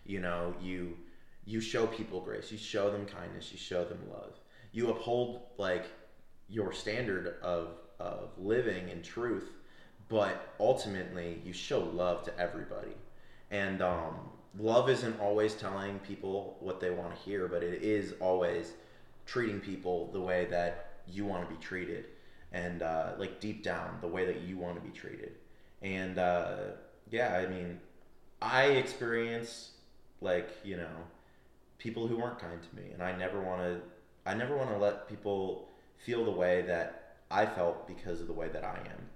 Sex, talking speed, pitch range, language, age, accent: male, 170 wpm, 90-110 Hz, English, 20-39, American